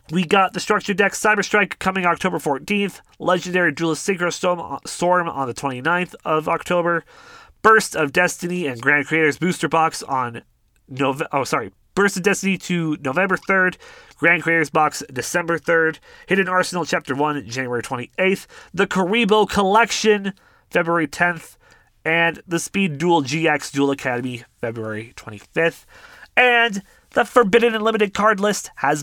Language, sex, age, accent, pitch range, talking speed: English, male, 30-49, American, 140-205 Hz, 145 wpm